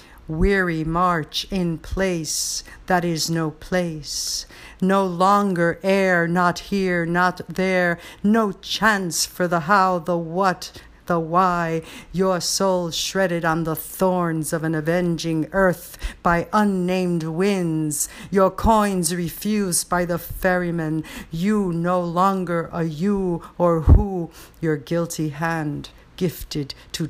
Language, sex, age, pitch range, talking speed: English, female, 50-69, 155-180 Hz, 120 wpm